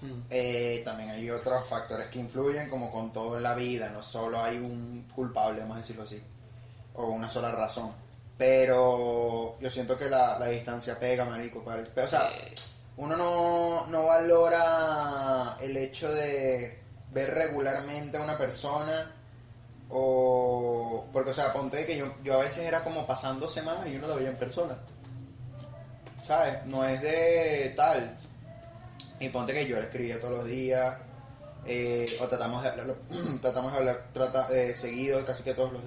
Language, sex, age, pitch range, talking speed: Spanish, male, 20-39, 120-135 Hz, 165 wpm